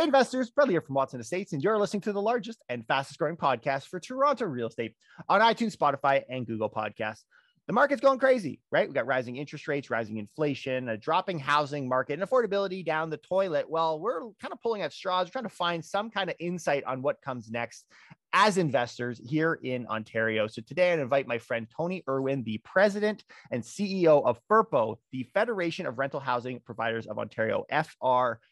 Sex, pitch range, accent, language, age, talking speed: male, 125-185 Hz, American, English, 30-49, 200 wpm